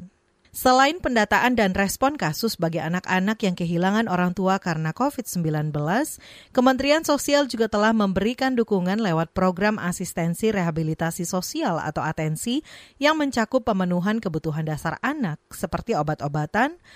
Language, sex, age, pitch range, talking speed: Indonesian, female, 40-59, 170-240 Hz, 120 wpm